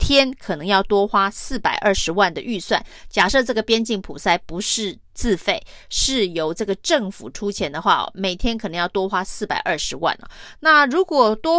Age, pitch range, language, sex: 30-49, 185-235 Hz, Chinese, female